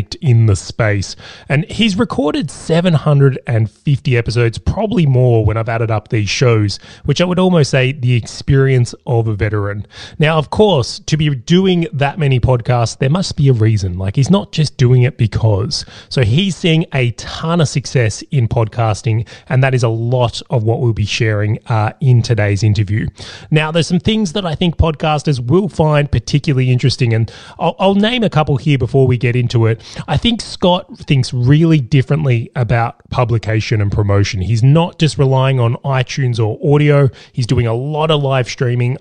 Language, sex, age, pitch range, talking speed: English, male, 20-39, 115-150 Hz, 185 wpm